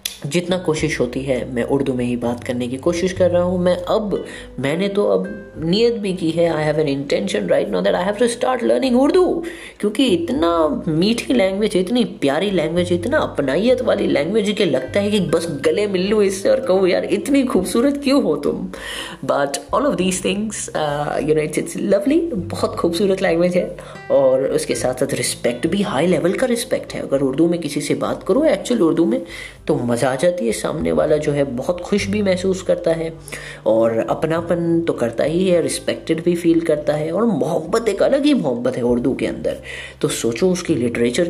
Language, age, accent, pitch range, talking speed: Hindi, 20-39, native, 155-210 Hz, 200 wpm